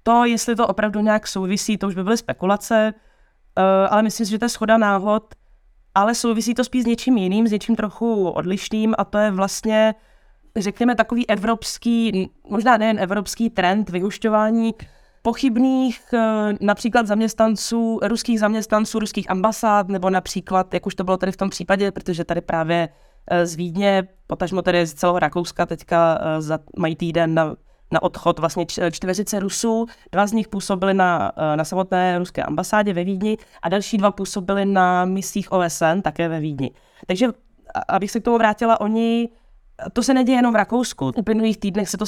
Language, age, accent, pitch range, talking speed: Czech, 20-39, native, 185-225 Hz, 170 wpm